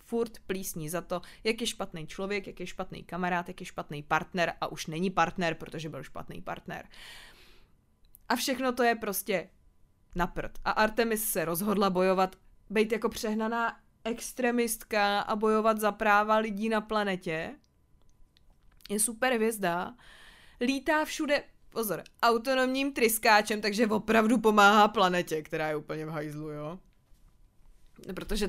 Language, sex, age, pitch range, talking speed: Czech, female, 20-39, 170-220 Hz, 135 wpm